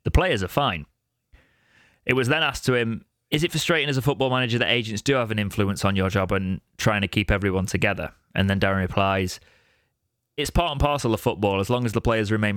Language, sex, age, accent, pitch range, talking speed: English, male, 20-39, British, 100-125 Hz, 230 wpm